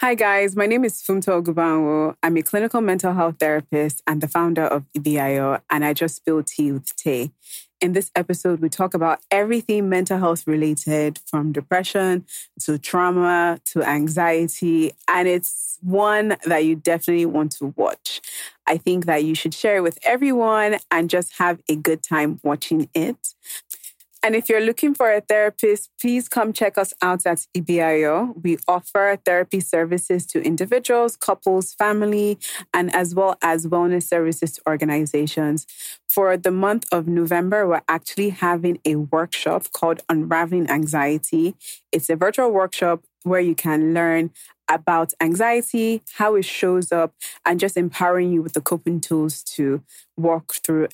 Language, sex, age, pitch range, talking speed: English, female, 20-39, 155-190 Hz, 160 wpm